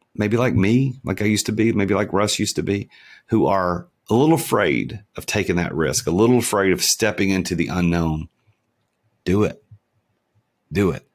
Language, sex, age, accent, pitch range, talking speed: English, male, 40-59, American, 85-110 Hz, 190 wpm